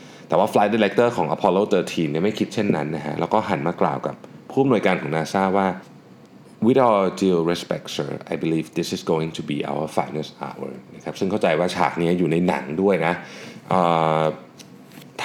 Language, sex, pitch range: Thai, male, 75-100 Hz